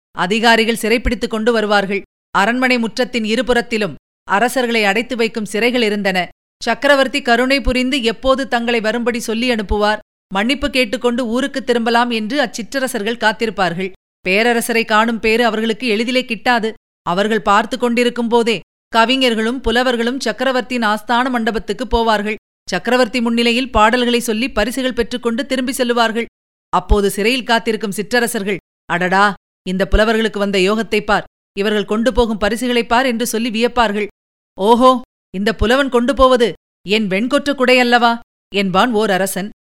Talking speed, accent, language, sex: 120 wpm, native, Tamil, female